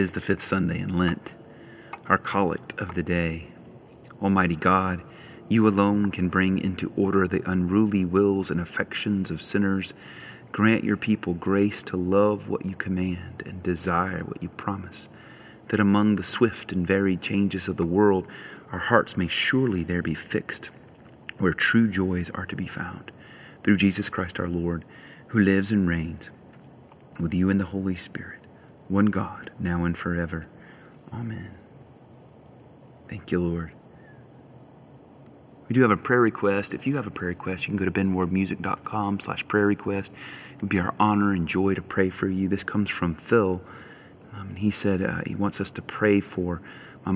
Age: 30-49